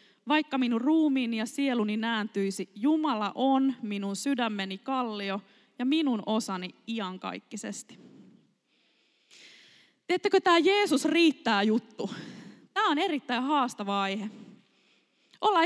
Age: 20-39